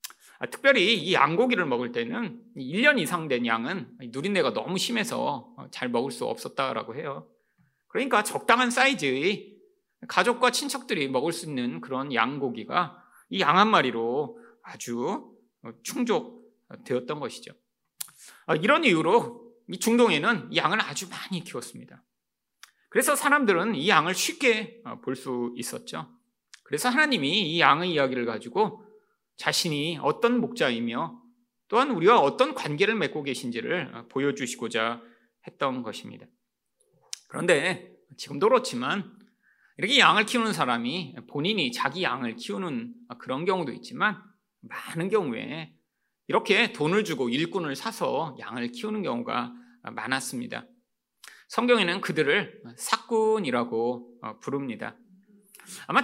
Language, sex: Korean, male